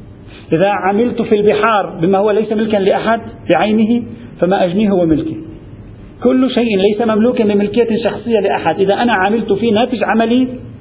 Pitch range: 150-210 Hz